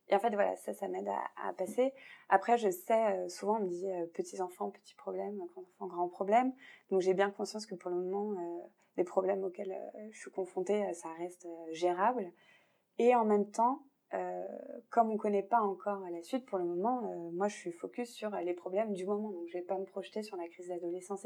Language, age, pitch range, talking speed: French, 20-39, 180-215 Hz, 245 wpm